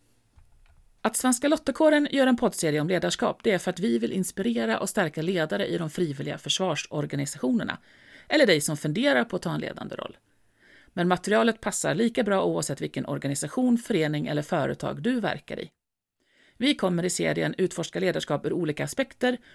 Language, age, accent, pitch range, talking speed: Swedish, 40-59, native, 150-225 Hz, 165 wpm